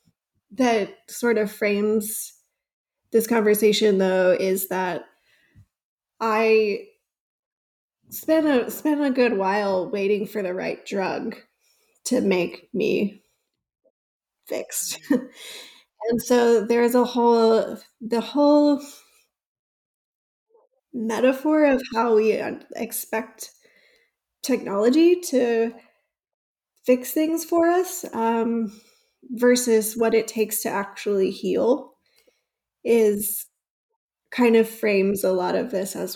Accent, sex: American, female